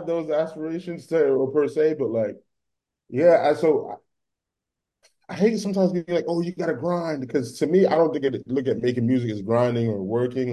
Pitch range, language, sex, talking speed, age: 110-150 Hz, English, male, 205 wpm, 20-39